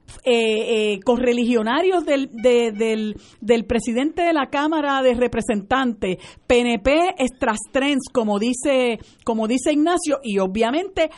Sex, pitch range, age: female, 220-275 Hz, 50-69